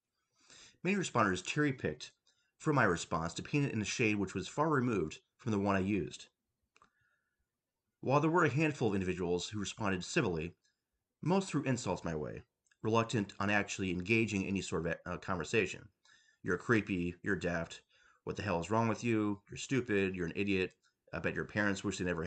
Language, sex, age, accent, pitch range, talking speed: English, male, 30-49, American, 95-130 Hz, 190 wpm